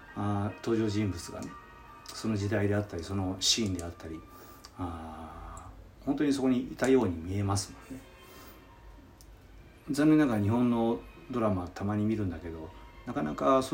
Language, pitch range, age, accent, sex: Japanese, 90-120 Hz, 40-59, native, male